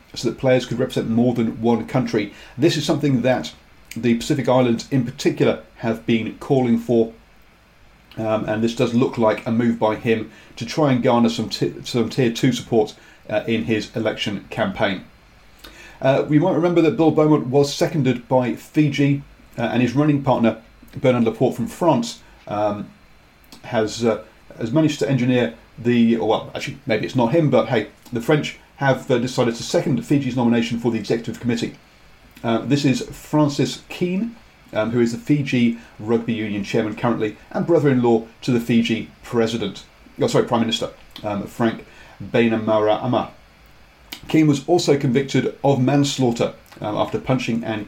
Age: 40-59